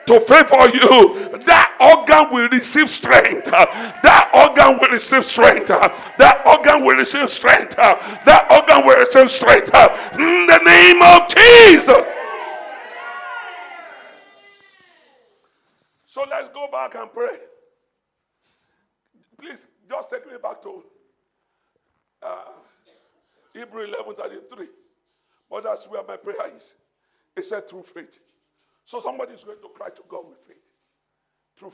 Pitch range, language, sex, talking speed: 260-405 Hz, English, male, 125 wpm